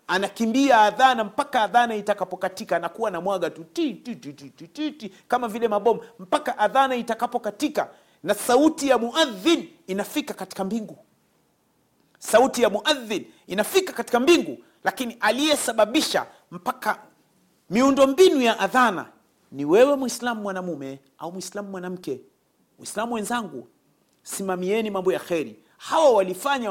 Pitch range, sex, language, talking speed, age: 205-275 Hz, male, Swahili, 130 wpm, 40-59